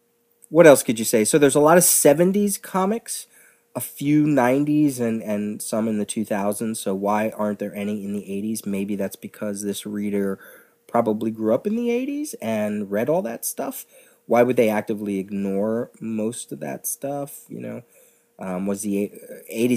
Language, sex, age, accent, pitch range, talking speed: English, male, 30-49, American, 100-125 Hz, 180 wpm